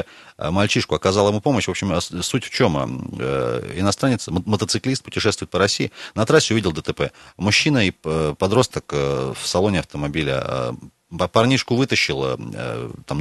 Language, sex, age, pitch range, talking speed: Russian, male, 30-49, 90-115 Hz, 125 wpm